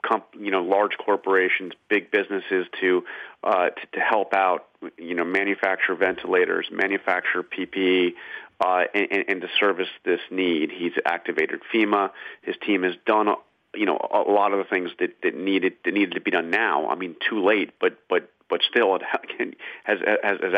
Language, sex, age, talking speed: English, male, 30-49, 185 wpm